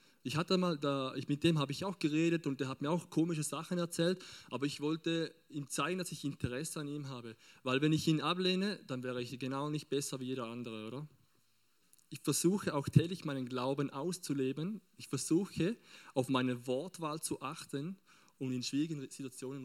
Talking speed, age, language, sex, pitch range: 190 wpm, 20-39, German, male, 130-160 Hz